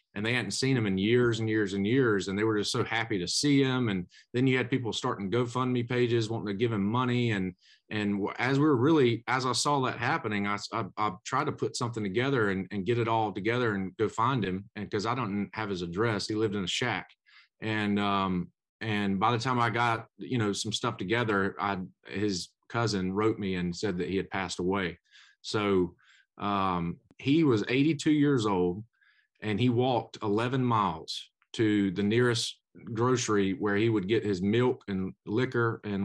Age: 30-49